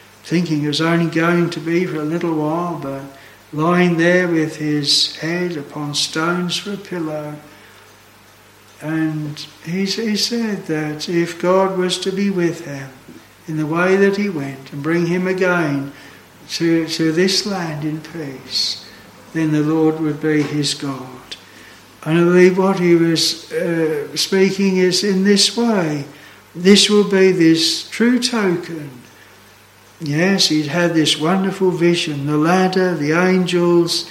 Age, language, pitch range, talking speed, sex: 60-79, English, 150-180 Hz, 150 wpm, male